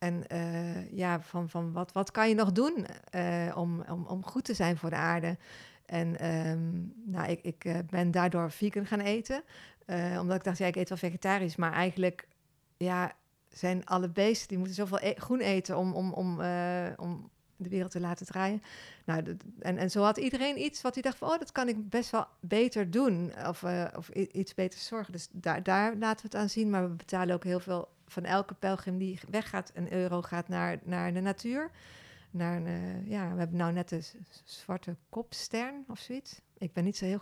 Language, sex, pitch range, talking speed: Dutch, female, 175-205 Hz, 215 wpm